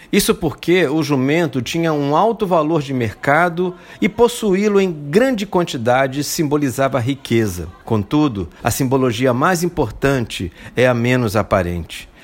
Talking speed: 125 wpm